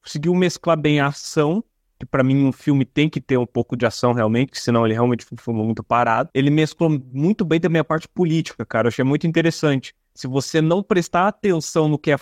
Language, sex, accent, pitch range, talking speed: Portuguese, male, Brazilian, 130-165 Hz, 220 wpm